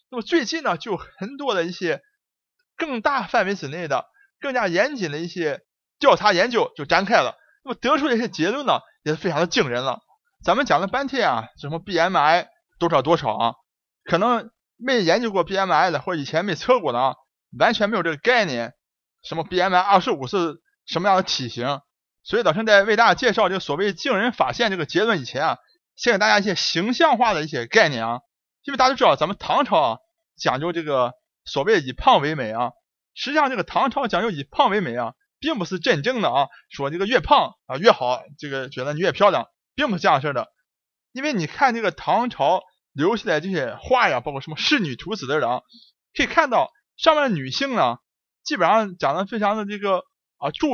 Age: 30-49